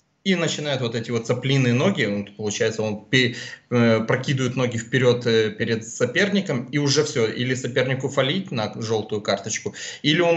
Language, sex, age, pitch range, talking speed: Russian, male, 20-39, 110-130 Hz, 155 wpm